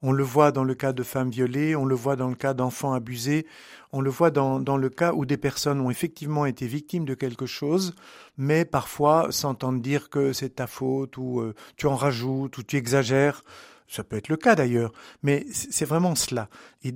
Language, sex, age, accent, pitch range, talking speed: French, male, 50-69, French, 130-170 Hz, 210 wpm